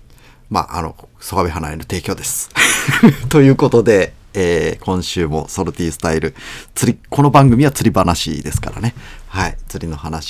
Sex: male